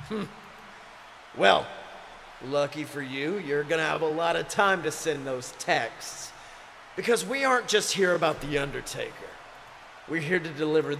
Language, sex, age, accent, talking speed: English, male, 40-59, American, 155 wpm